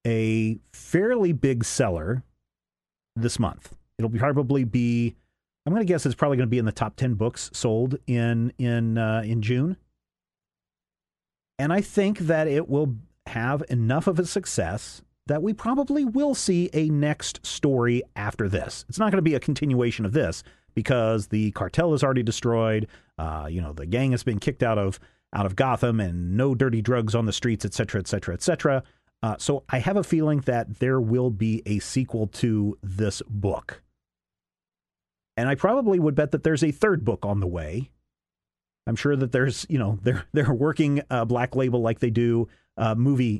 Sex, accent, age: male, American, 40-59